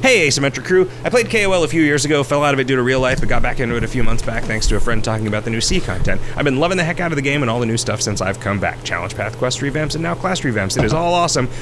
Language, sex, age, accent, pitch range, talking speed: English, male, 30-49, American, 105-135 Hz, 345 wpm